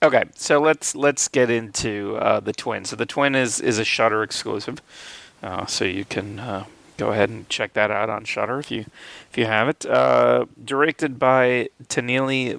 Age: 30-49